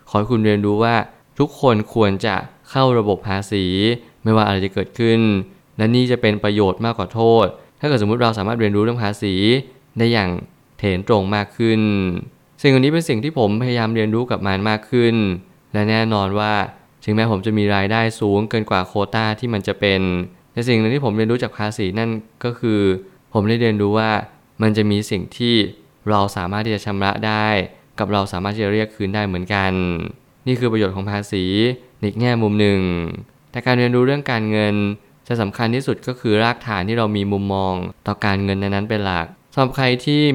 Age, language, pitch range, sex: 20-39, Thai, 100-120 Hz, male